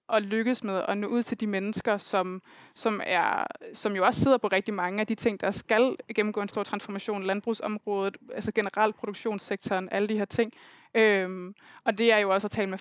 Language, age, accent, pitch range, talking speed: Danish, 20-39, native, 205-235 Hz, 195 wpm